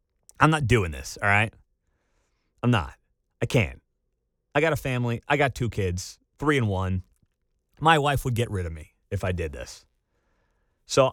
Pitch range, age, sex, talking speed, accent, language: 110-160 Hz, 30-49, male, 180 wpm, American, English